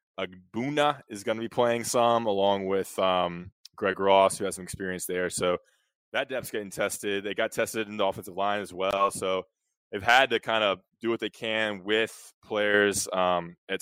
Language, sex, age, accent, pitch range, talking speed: English, male, 20-39, American, 90-105 Hz, 195 wpm